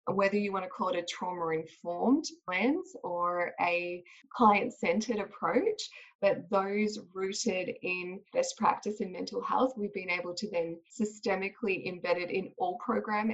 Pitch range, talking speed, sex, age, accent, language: 180-225 Hz, 150 wpm, female, 20-39, Australian, English